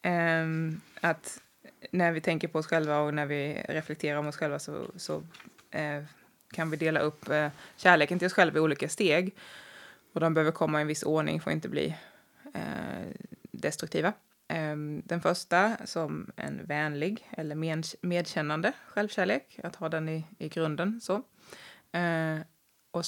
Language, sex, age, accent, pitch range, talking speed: English, female, 20-39, Swedish, 160-200 Hz, 145 wpm